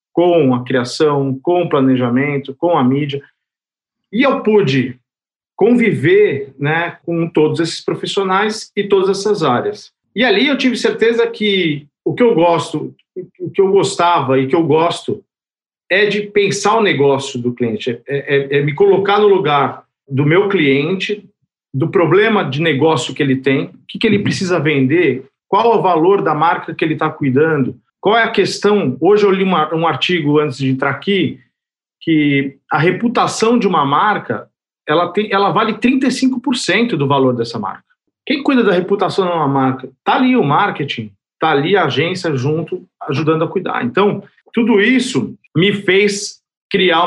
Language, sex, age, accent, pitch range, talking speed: Portuguese, male, 50-69, Brazilian, 145-220 Hz, 165 wpm